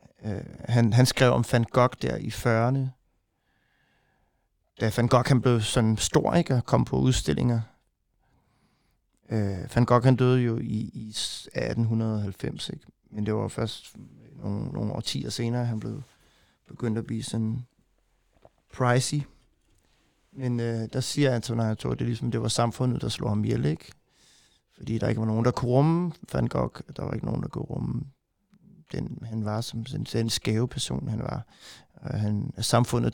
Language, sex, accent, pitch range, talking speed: Danish, male, native, 110-130 Hz, 175 wpm